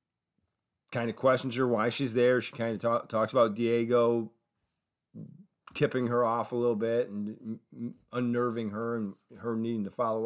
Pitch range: 100-125 Hz